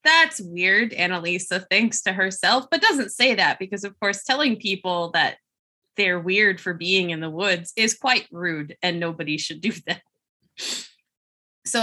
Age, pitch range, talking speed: 20-39, 175-240 Hz, 160 wpm